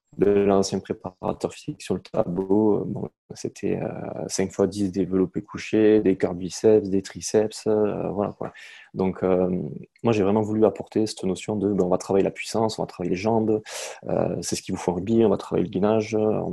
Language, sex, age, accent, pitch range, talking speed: French, male, 20-39, French, 95-110 Hz, 205 wpm